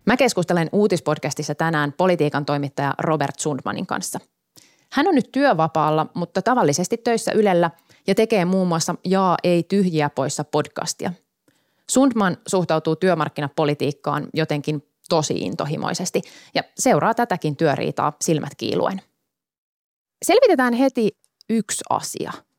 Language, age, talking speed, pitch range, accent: Finnish, 30-49, 110 wpm, 155-220 Hz, native